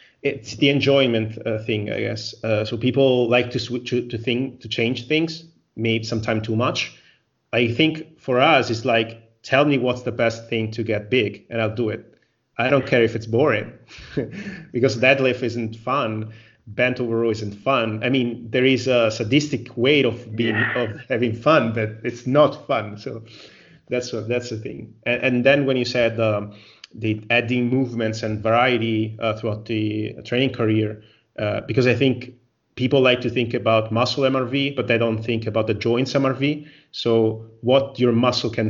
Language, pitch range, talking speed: Italian, 110-125 Hz, 185 wpm